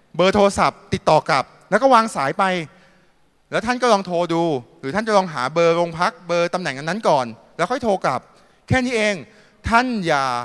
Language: Thai